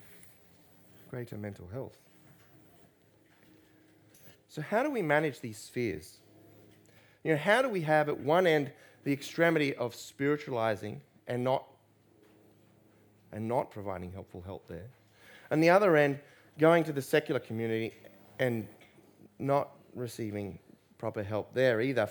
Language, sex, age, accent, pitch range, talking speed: English, male, 30-49, Australian, 105-145 Hz, 130 wpm